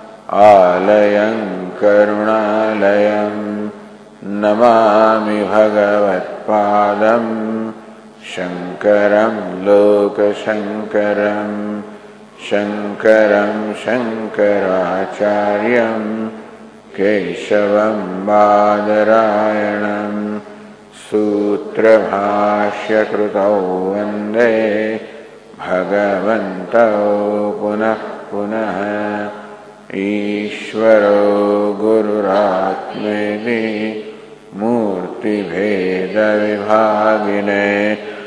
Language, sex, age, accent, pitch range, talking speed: English, male, 50-69, Indian, 105-110 Hz, 35 wpm